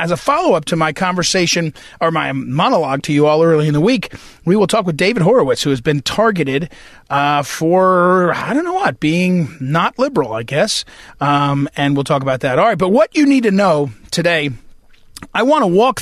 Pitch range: 150-200 Hz